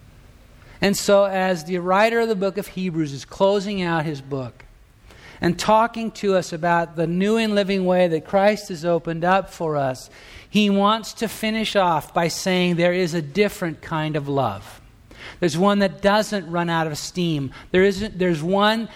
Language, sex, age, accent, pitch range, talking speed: English, male, 50-69, American, 135-195 Hz, 185 wpm